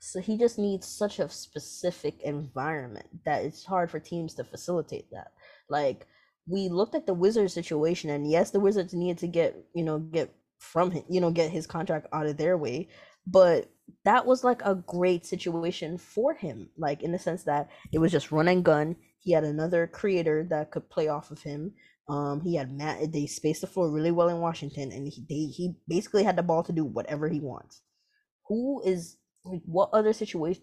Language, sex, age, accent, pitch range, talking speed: English, female, 20-39, American, 155-185 Hz, 205 wpm